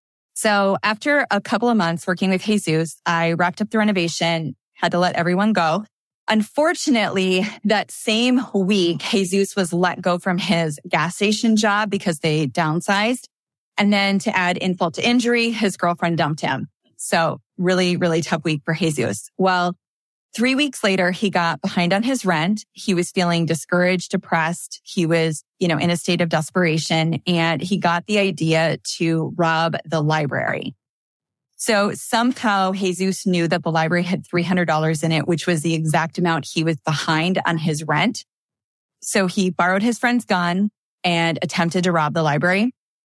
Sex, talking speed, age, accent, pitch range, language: female, 165 wpm, 20-39, American, 165-200 Hz, English